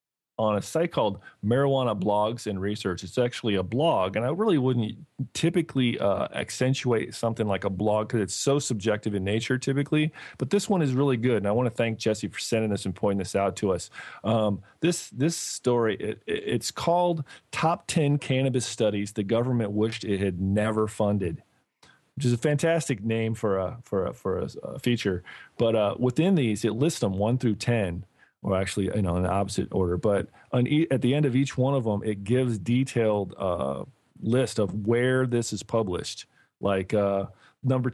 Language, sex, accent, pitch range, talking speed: English, male, American, 100-130 Hz, 200 wpm